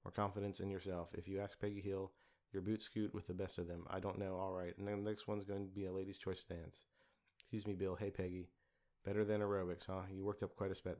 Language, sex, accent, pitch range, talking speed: English, male, American, 90-100 Hz, 265 wpm